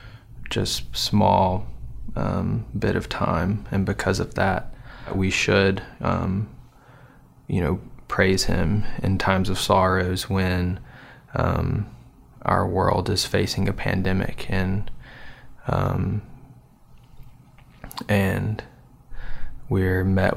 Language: English